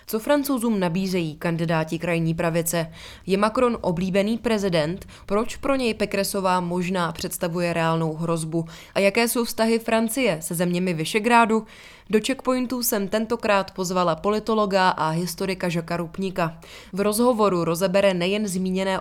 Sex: female